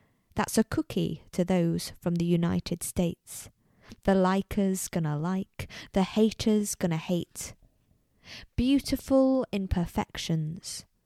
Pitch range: 175-230 Hz